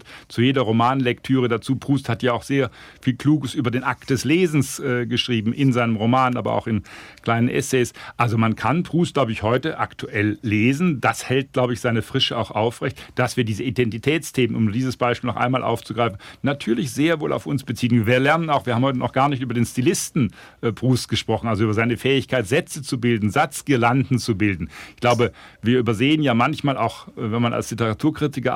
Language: German